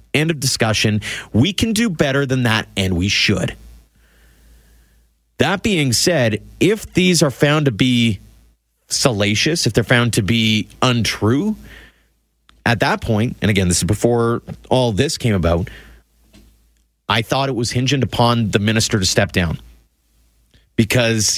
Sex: male